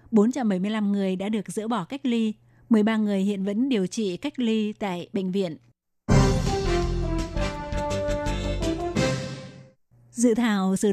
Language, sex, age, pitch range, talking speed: Vietnamese, female, 20-39, 195-230 Hz, 120 wpm